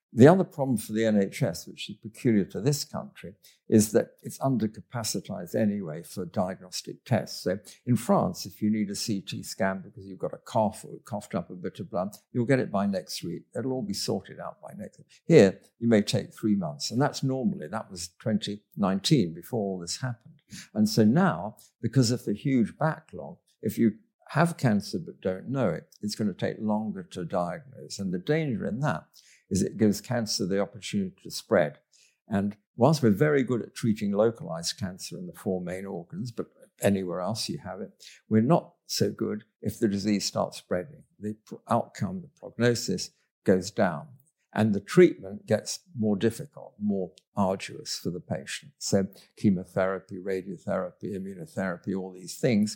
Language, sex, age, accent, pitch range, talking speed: English, male, 60-79, British, 100-135 Hz, 185 wpm